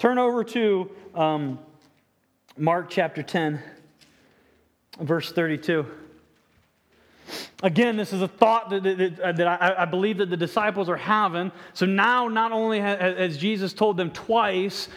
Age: 30-49